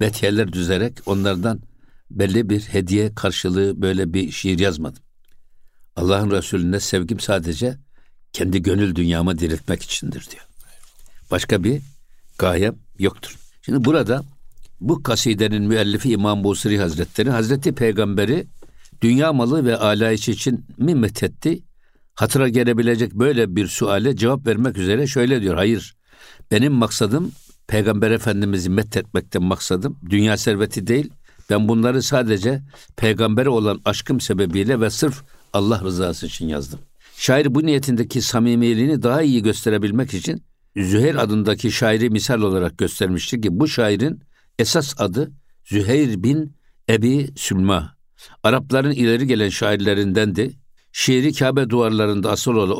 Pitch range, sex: 100-125 Hz, male